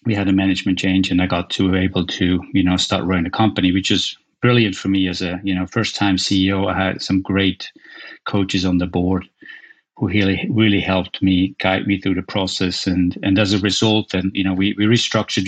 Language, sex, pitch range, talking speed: English, male, 95-110 Hz, 230 wpm